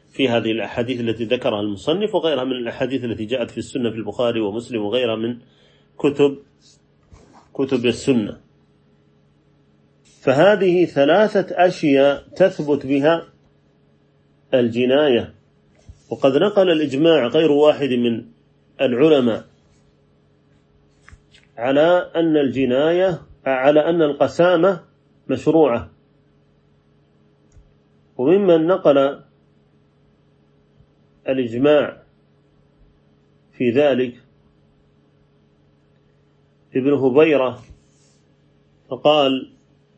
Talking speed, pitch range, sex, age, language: 75 wpm, 120-150 Hz, male, 40-59, Arabic